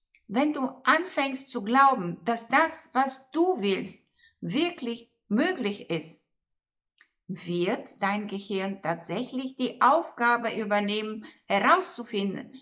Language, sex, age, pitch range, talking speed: German, female, 60-79, 200-265 Hz, 100 wpm